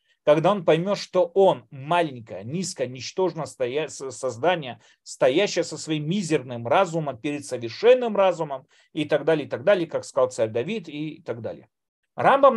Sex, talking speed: male, 150 wpm